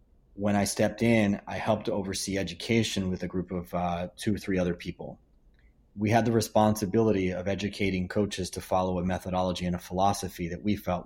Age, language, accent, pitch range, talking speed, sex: 30-49, English, American, 90-105 Hz, 190 wpm, male